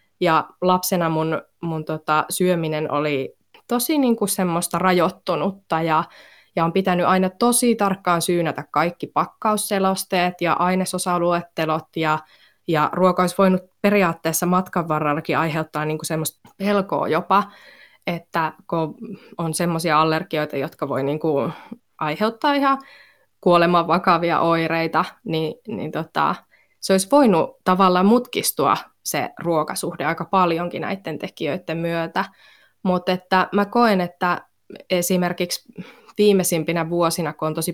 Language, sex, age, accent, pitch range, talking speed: Finnish, female, 20-39, native, 160-190 Hz, 115 wpm